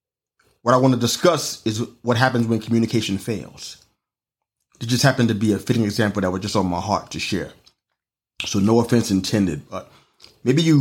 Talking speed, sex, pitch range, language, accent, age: 190 wpm, male, 110-130 Hz, English, American, 30-49